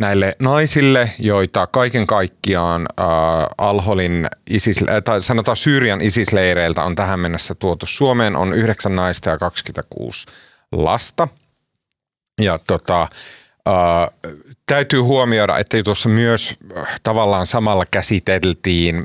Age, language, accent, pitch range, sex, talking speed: 30-49, Finnish, native, 85-110 Hz, male, 110 wpm